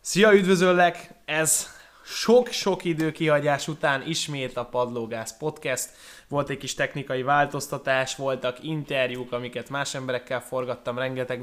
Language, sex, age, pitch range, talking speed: Hungarian, male, 20-39, 125-150 Hz, 115 wpm